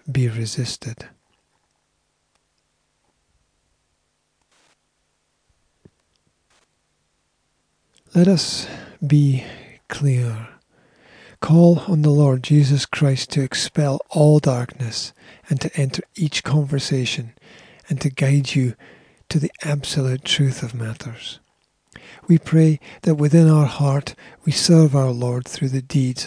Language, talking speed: English, 100 wpm